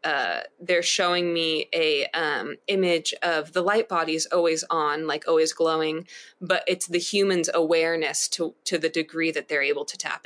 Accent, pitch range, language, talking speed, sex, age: American, 165-205 Hz, English, 175 wpm, female, 20-39